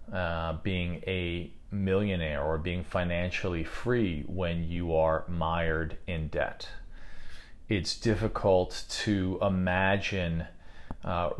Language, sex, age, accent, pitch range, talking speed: English, male, 40-59, American, 85-105 Hz, 100 wpm